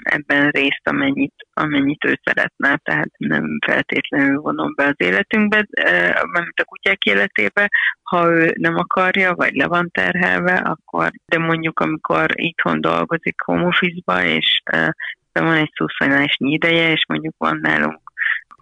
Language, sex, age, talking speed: Hungarian, female, 30-49, 145 wpm